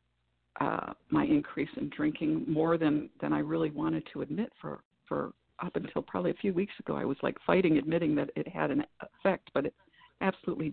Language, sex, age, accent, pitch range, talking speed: English, female, 50-69, American, 155-190 Hz, 195 wpm